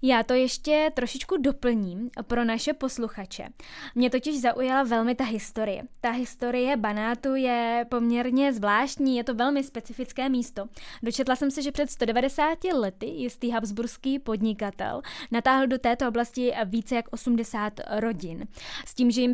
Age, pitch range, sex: 10-29, 220-255 Hz, female